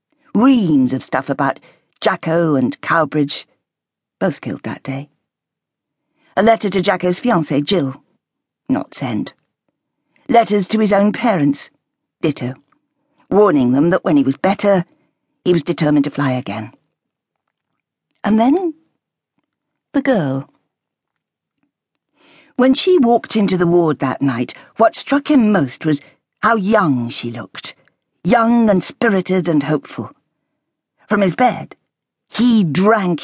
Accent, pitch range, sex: British, 145-230 Hz, female